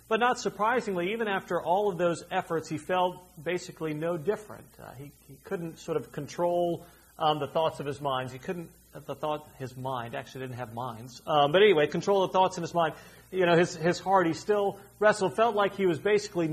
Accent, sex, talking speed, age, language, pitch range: American, male, 215 wpm, 40-59, English, 135-175 Hz